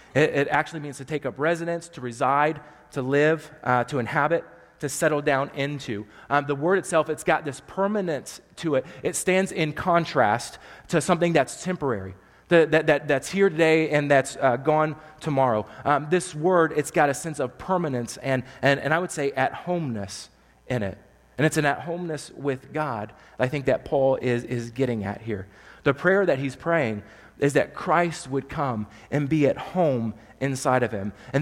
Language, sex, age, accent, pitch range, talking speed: English, male, 30-49, American, 125-155 Hz, 185 wpm